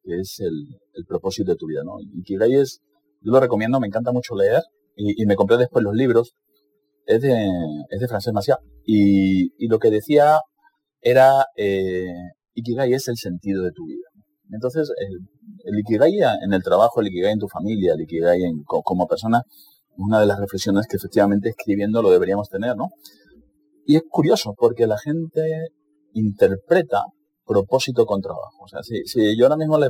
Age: 30-49